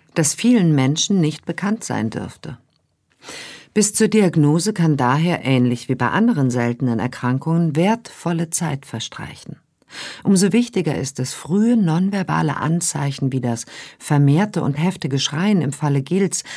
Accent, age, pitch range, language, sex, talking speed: German, 50-69, 140-190 Hz, German, female, 135 wpm